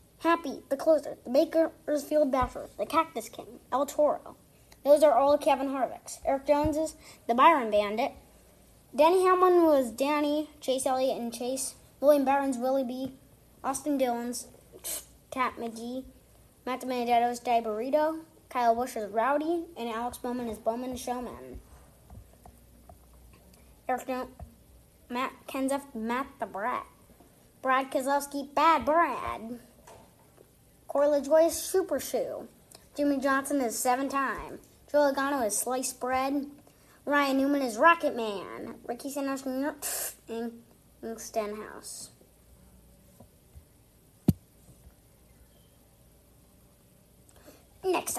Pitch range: 235-295 Hz